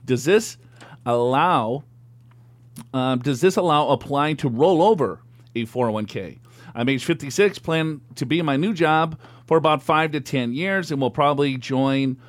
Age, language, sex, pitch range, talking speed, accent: 40-59, English, male, 115-145 Hz, 160 wpm, American